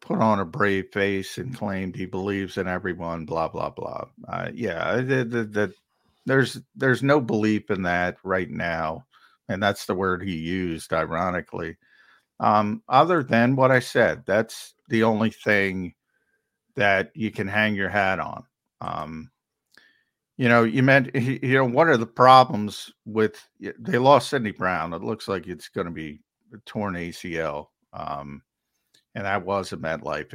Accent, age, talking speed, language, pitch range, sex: American, 50-69, 165 wpm, English, 90-115 Hz, male